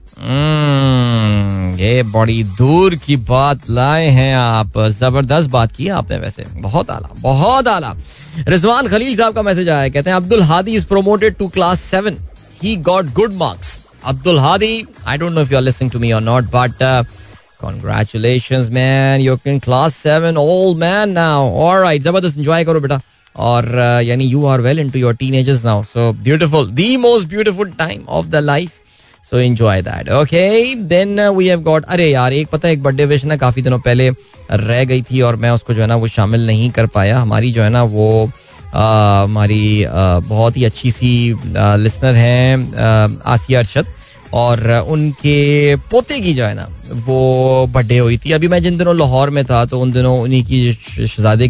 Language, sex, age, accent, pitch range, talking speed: Hindi, male, 20-39, native, 115-155 Hz, 175 wpm